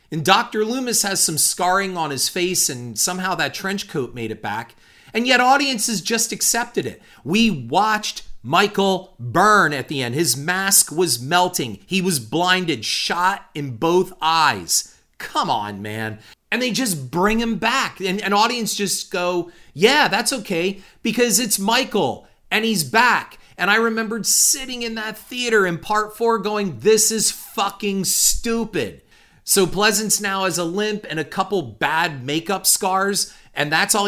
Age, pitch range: 40-59, 155-215 Hz